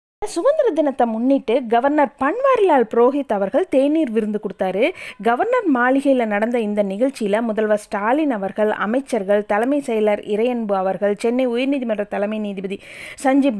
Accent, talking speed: native, 120 wpm